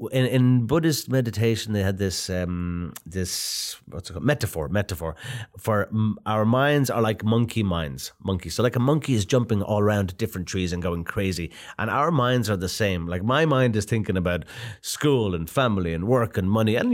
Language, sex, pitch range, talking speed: Russian, male, 90-115 Hz, 195 wpm